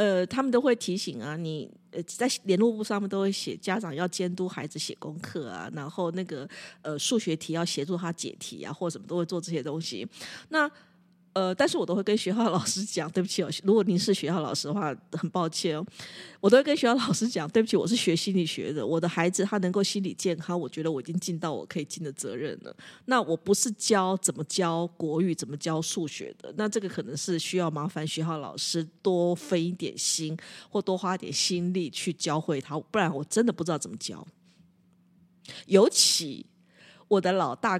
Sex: female